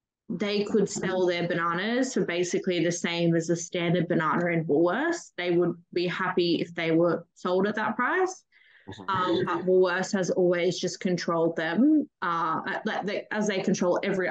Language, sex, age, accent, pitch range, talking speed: English, female, 20-39, Australian, 175-205 Hz, 170 wpm